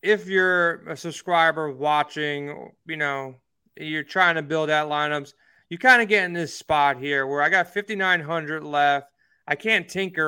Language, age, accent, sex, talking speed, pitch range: English, 20-39, American, male, 170 wpm, 150-180 Hz